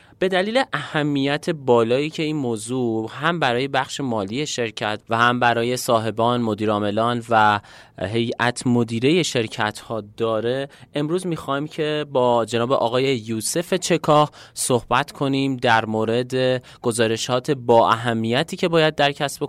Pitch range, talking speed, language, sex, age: 115-145 Hz, 130 wpm, Persian, male, 30-49